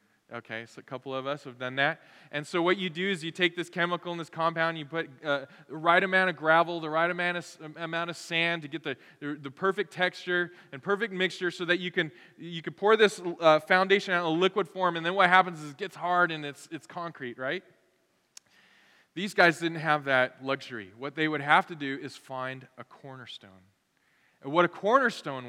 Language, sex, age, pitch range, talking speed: English, male, 20-39, 140-185 Hz, 225 wpm